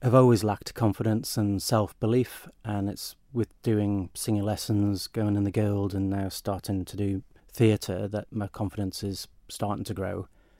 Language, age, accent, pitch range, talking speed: English, 30-49, British, 100-115 Hz, 165 wpm